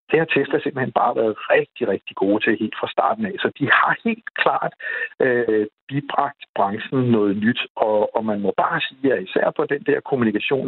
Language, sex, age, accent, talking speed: Danish, male, 60-79, native, 200 wpm